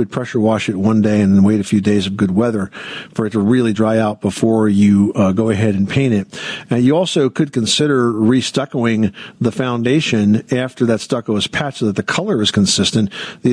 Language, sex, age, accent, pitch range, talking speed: English, male, 50-69, American, 110-140 Hz, 210 wpm